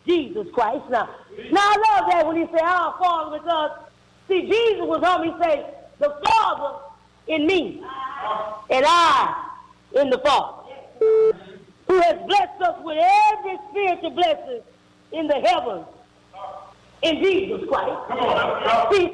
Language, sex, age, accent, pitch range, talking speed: English, female, 40-59, American, 310-405 Hz, 130 wpm